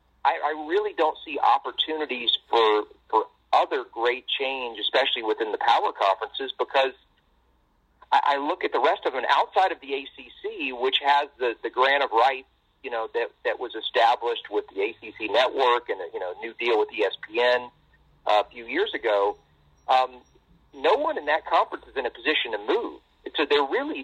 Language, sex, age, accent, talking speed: English, male, 40-59, American, 185 wpm